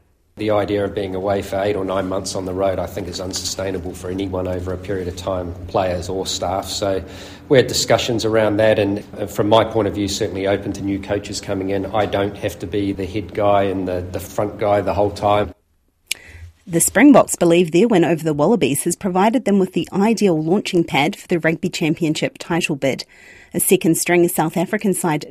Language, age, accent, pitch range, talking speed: English, 40-59, Australian, 100-165 Hz, 210 wpm